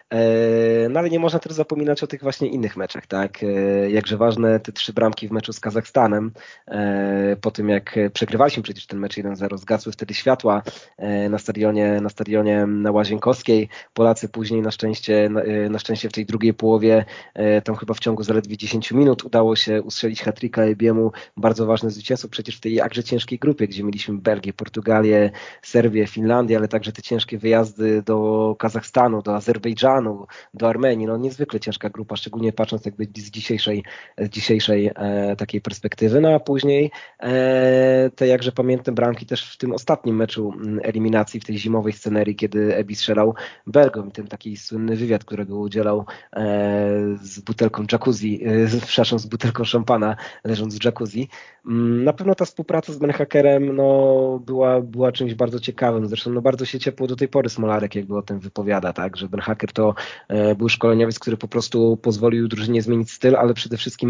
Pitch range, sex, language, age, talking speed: 105-120 Hz, male, Polish, 20-39, 170 wpm